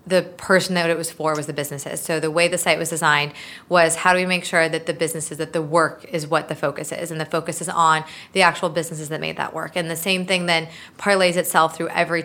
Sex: female